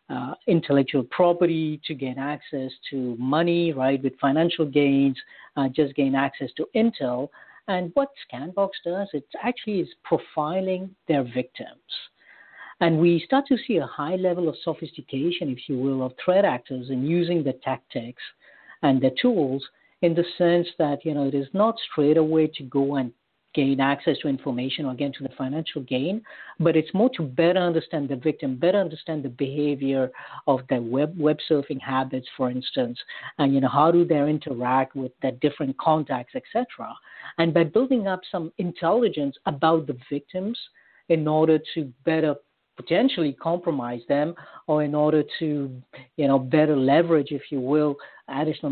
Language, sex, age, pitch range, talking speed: English, female, 50-69, 140-175 Hz, 170 wpm